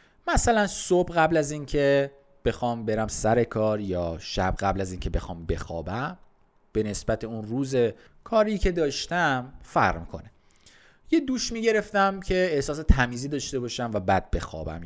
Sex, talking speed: male, 145 wpm